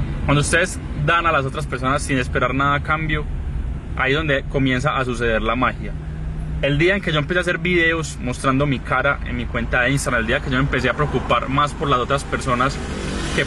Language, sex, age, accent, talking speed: Spanish, male, 20-39, Colombian, 225 wpm